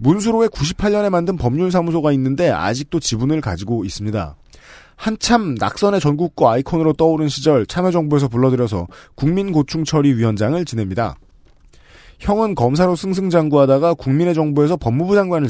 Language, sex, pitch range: Korean, male, 125-175 Hz